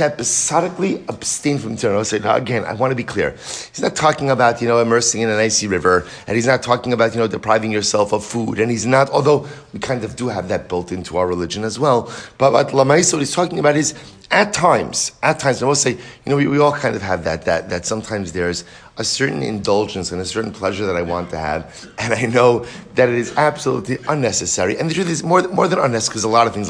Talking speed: 245 wpm